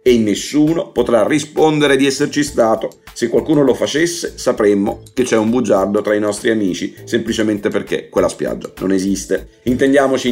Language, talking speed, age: Italian, 155 wpm, 50-69